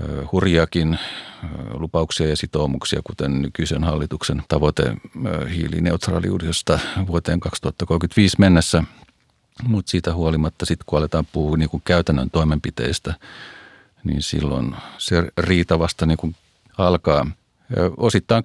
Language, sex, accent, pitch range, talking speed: Finnish, male, native, 80-95 Hz, 95 wpm